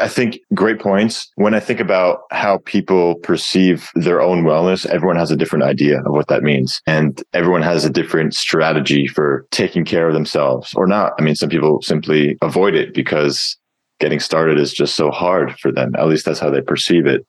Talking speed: 205 wpm